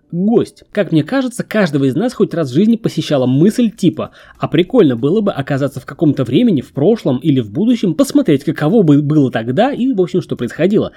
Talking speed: 195 wpm